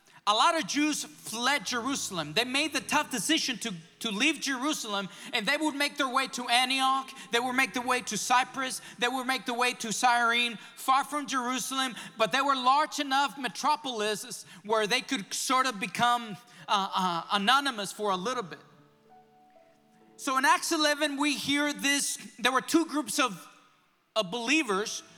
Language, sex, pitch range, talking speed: English, male, 215-280 Hz, 175 wpm